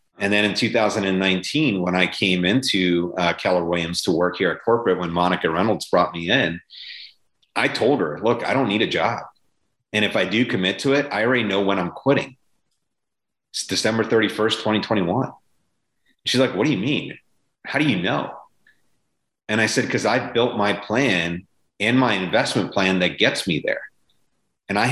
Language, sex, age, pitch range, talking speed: English, male, 30-49, 90-120 Hz, 185 wpm